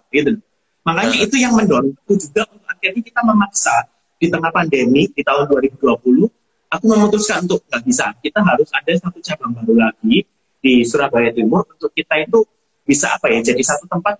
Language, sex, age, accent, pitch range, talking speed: Indonesian, male, 30-49, native, 160-215 Hz, 175 wpm